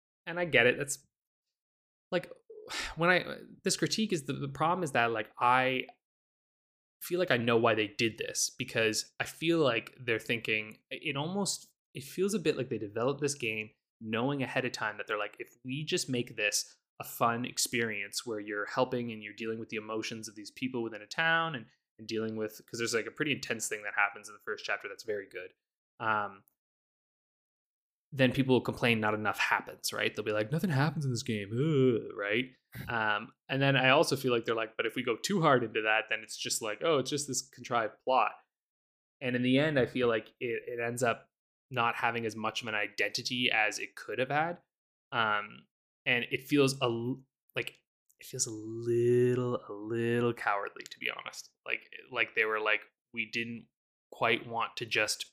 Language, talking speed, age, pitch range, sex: English, 205 wpm, 20-39, 110-140 Hz, male